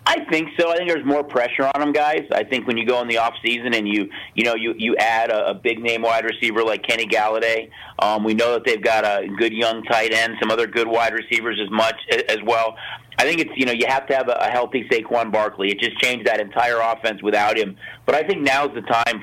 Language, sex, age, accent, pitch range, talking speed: English, male, 40-59, American, 115-135 Hz, 260 wpm